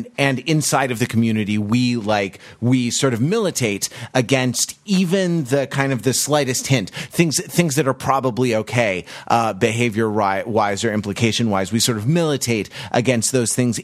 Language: English